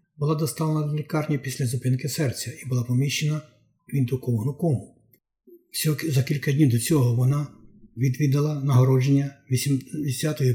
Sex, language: male, Ukrainian